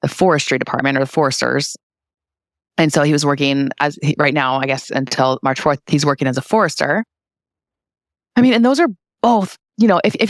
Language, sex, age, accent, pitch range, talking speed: English, female, 20-39, American, 145-175 Hz, 205 wpm